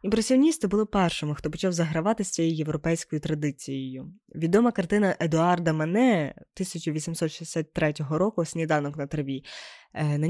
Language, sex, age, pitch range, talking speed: Ukrainian, female, 20-39, 155-185 Hz, 105 wpm